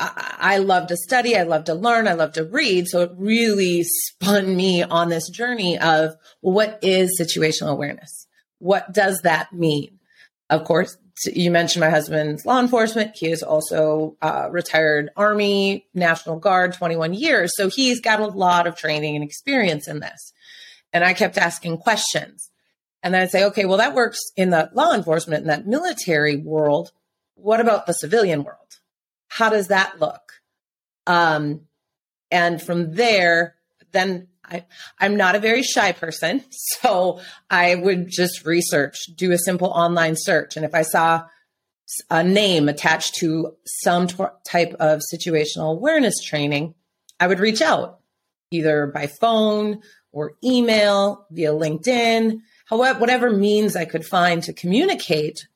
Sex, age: female, 30-49